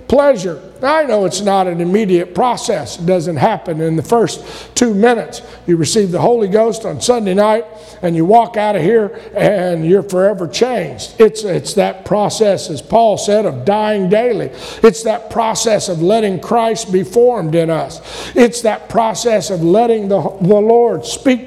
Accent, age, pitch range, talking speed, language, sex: American, 50-69, 195-240 Hz, 175 wpm, English, male